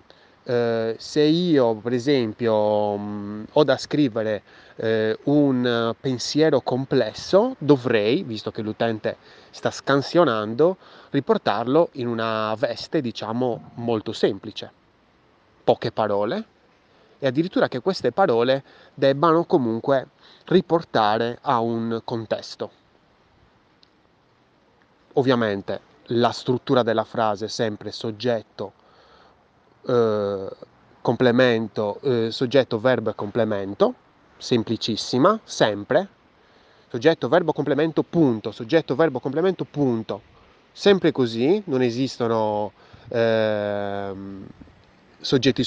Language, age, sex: Italian, 20-39, male